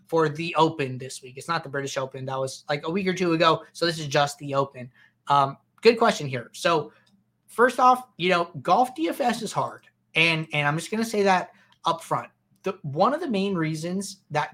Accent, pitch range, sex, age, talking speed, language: American, 145-185 Hz, male, 20-39, 215 wpm, English